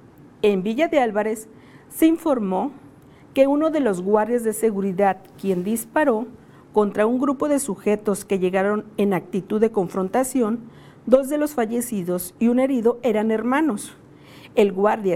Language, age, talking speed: Spanish, 50-69, 145 wpm